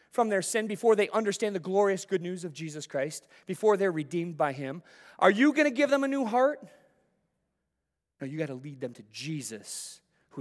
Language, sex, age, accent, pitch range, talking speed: English, male, 30-49, American, 125-195 Hz, 210 wpm